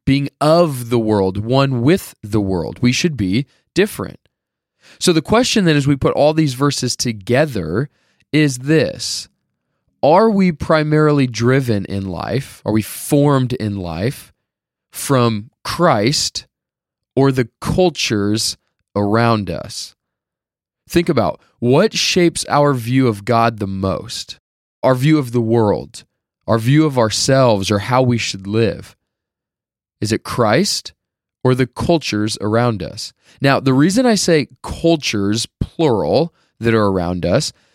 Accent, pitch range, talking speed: American, 105-145 Hz, 135 wpm